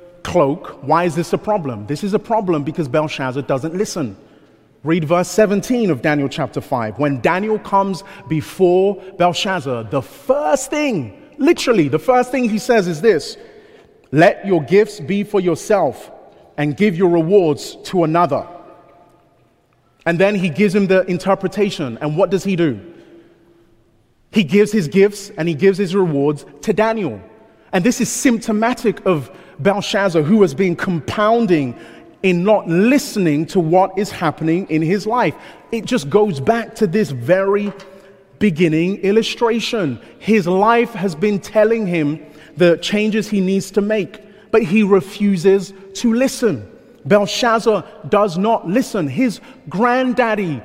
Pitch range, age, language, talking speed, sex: 165-215 Hz, 30-49, English, 145 wpm, male